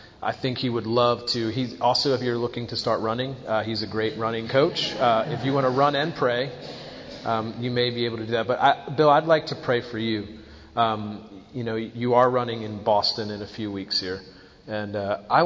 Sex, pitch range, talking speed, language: male, 105-125 Hz, 235 wpm, English